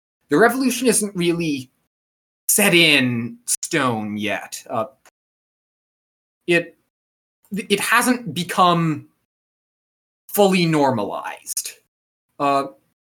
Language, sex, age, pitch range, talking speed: English, male, 20-39, 125-165 Hz, 75 wpm